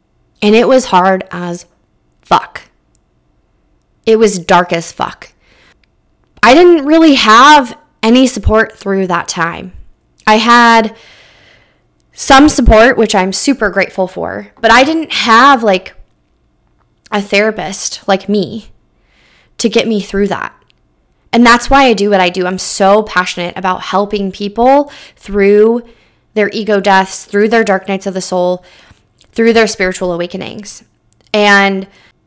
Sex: female